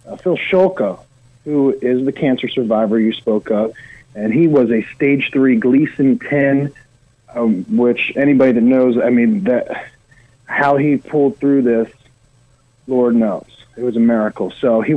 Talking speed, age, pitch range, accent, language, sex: 160 wpm, 40-59, 115-140 Hz, American, English, male